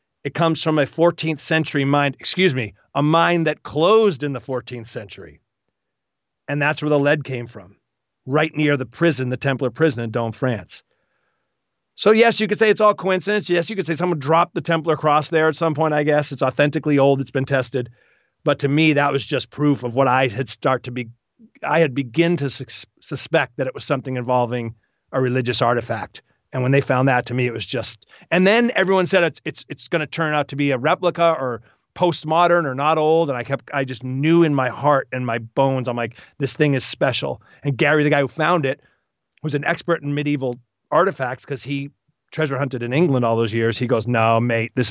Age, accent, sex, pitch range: 40-59, American, male, 125-160 Hz